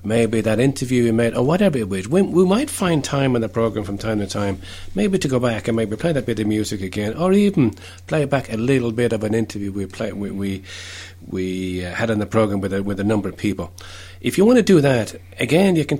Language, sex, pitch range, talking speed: English, male, 95-145 Hz, 255 wpm